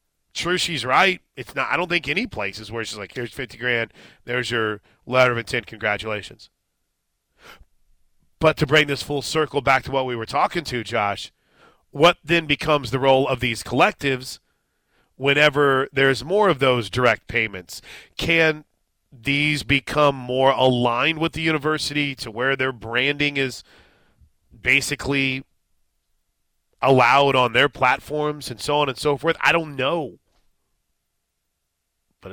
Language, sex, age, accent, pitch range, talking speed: English, male, 30-49, American, 115-140 Hz, 145 wpm